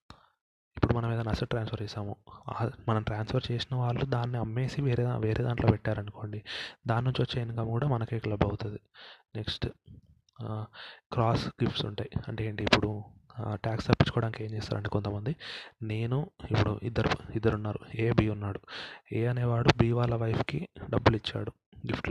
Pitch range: 110-125 Hz